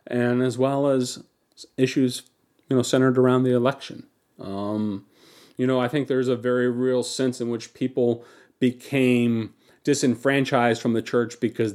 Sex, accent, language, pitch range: male, American, English, 120-135 Hz